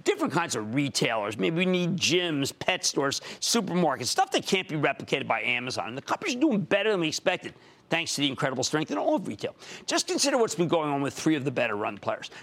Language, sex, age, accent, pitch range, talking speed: English, male, 50-69, American, 145-245 Hz, 230 wpm